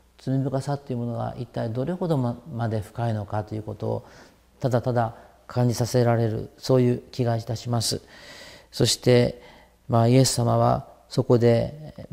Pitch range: 110-135 Hz